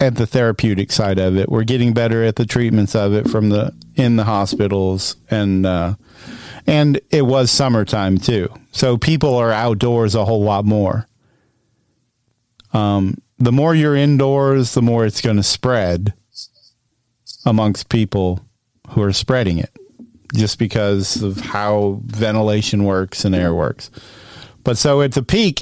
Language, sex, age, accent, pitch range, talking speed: English, male, 40-59, American, 105-125 Hz, 150 wpm